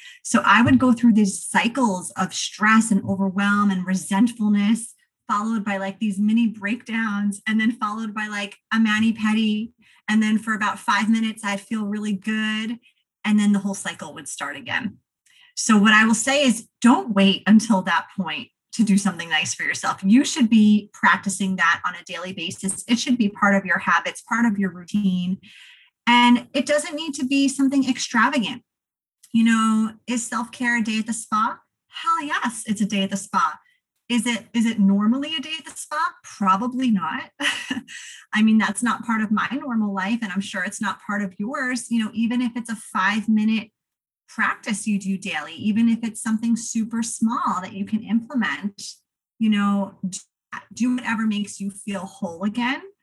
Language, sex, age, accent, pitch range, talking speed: English, female, 30-49, American, 200-240 Hz, 190 wpm